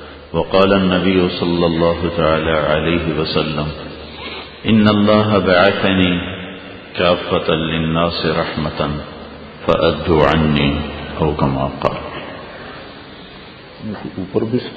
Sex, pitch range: male, 80-115 Hz